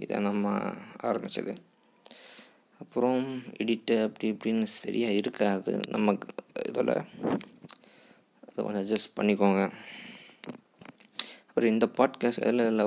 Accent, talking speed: native, 90 wpm